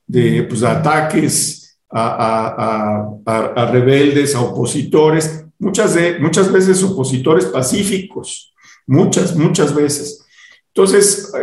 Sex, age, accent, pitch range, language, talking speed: male, 50-69, Mexican, 135-190 Hz, Spanish, 110 wpm